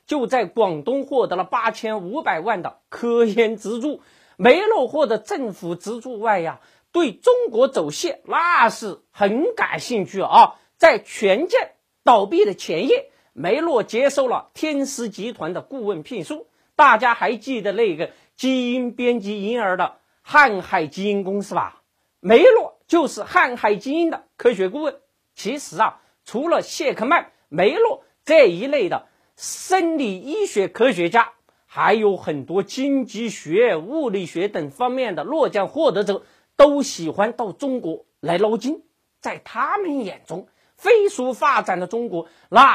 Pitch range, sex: 210-315 Hz, male